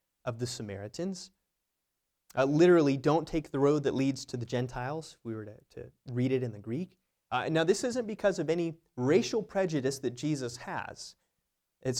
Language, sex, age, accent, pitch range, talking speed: English, male, 30-49, American, 120-155 Hz, 180 wpm